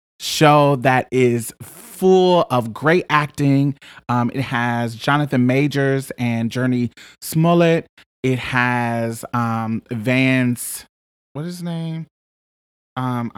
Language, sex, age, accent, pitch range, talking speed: English, male, 20-39, American, 120-160 Hz, 110 wpm